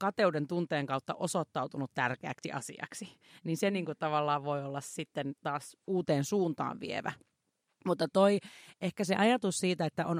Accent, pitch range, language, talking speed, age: native, 155-195 Hz, Finnish, 145 wpm, 40-59